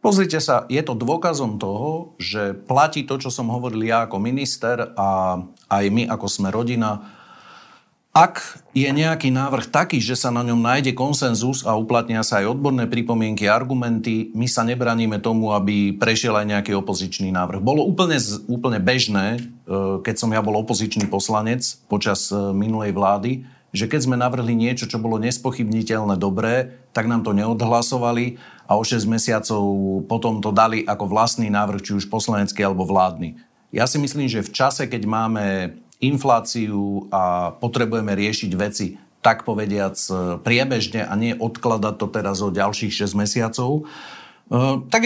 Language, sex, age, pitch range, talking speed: Slovak, male, 40-59, 105-130 Hz, 155 wpm